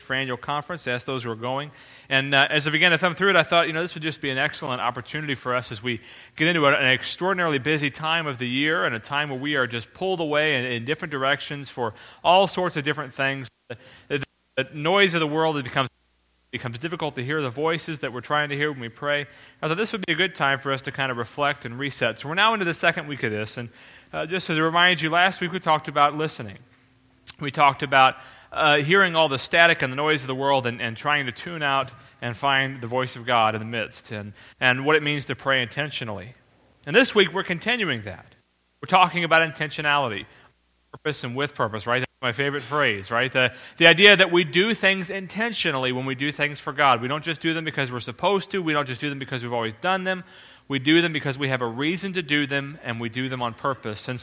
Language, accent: English, American